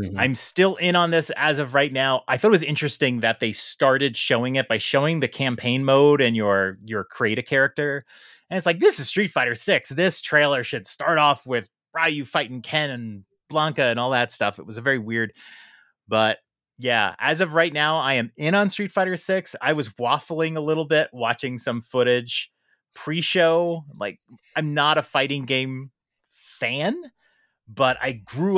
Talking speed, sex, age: 195 wpm, male, 30-49